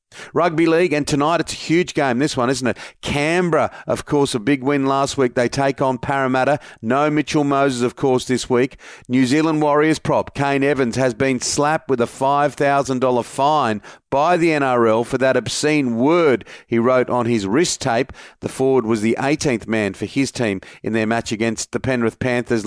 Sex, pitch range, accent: male, 120-145 Hz, Australian